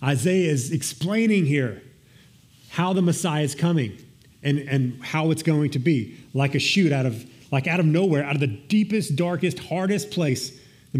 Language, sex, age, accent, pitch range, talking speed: English, male, 40-59, American, 125-155 Hz, 180 wpm